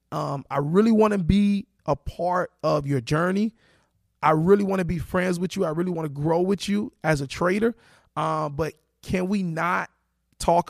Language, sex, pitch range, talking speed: English, male, 150-200 Hz, 195 wpm